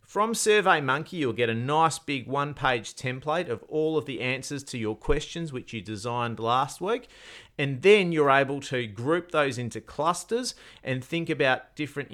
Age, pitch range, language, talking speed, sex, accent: 40-59, 120-155 Hz, English, 175 wpm, male, Australian